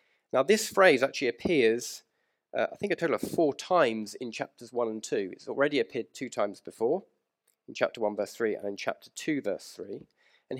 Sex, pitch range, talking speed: male, 120-160 Hz, 205 wpm